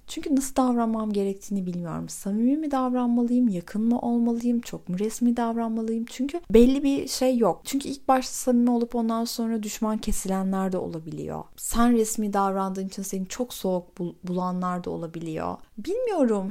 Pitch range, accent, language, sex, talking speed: 185-240 Hz, native, Turkish, female, 155 wpm